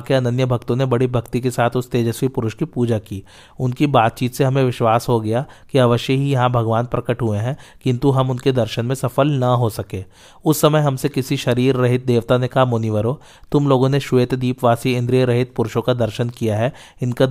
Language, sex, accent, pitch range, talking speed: Hindi, male, native, 115-130 Hz, 105 wpm